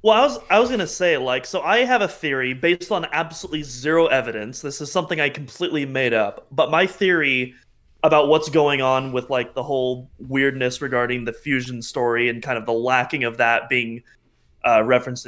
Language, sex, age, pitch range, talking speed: English, male, 20-39, 125-170 Hz, 205 wpm